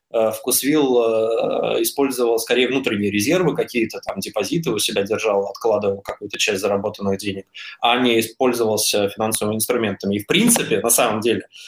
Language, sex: Russian, male